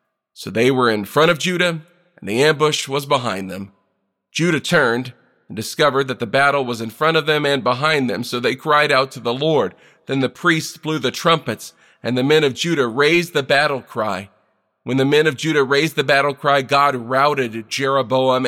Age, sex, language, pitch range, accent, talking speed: 40-59, male, English, 115-145 Hz, American, 200 wpm